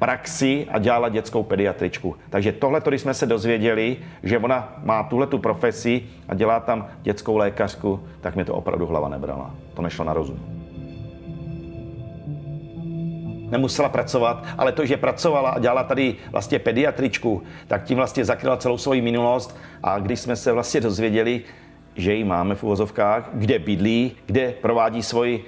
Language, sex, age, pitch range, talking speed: Czech, male, 50-69, 105-125 Hz, 155 wpm